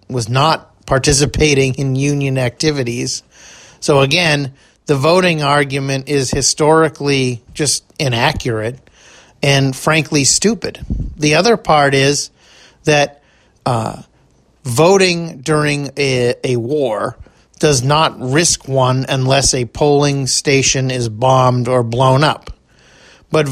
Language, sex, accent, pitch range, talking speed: English, male, American, 130-150 Hz, 110 wpm